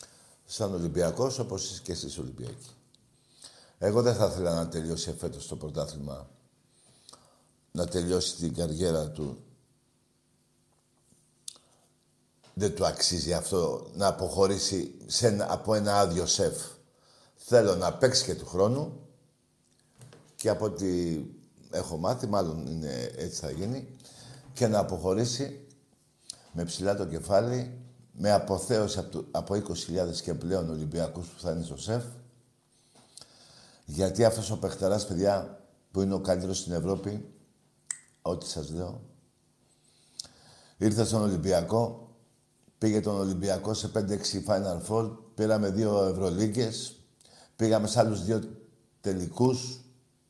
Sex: male